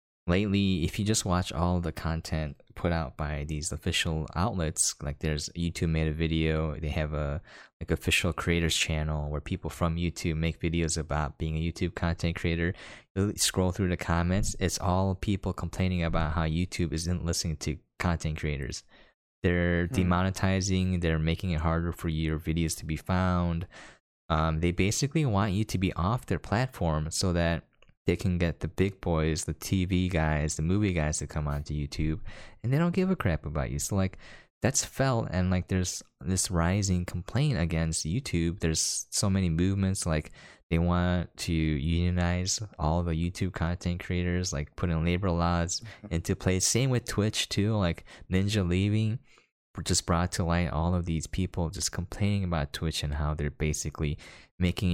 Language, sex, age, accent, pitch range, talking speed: English, male, 20-39, American, 80-95 Hz, 175 wpm